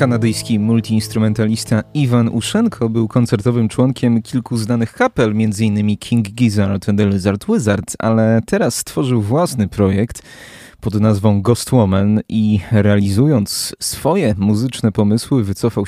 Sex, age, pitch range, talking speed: male, 30-49, 100-120 Hz, 120 wpm